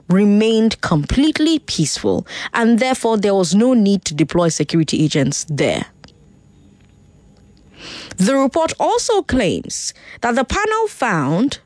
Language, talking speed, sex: English, 115 wpm, female